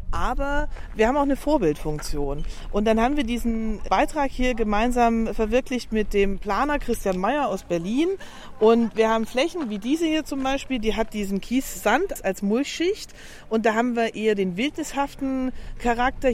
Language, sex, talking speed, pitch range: German, female, 170 wpm, 200-245 Hz